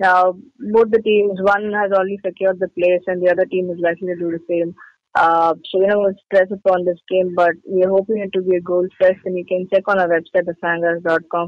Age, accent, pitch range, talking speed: 20-39, Indian, 175-195 Hz, 245 wpm